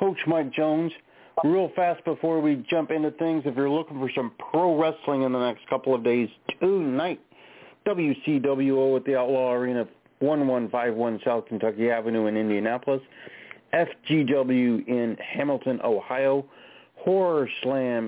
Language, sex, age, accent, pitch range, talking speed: English, male, 40-59, American, 120-145 Hz, 135 wpm